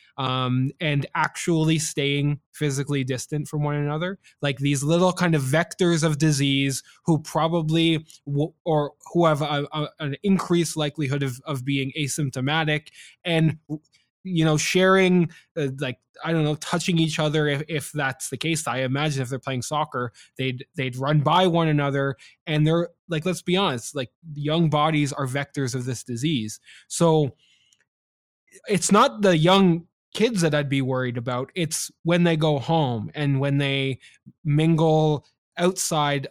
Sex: male